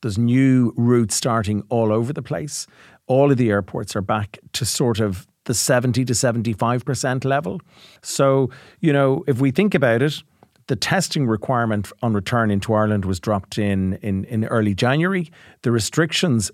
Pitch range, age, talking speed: 105-135 Hz, 40-59, 165 wpm